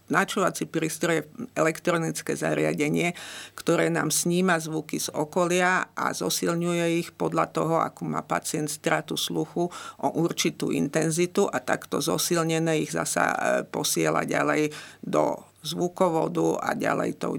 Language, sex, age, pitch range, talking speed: Slovak, female, 50-69, 155-175 Hz, 120 wpm